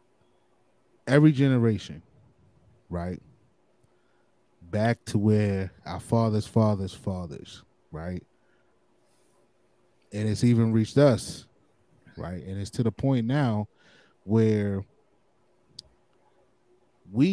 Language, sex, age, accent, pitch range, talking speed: English, male, 20-39, American, 95-120 Hz, 85 wpm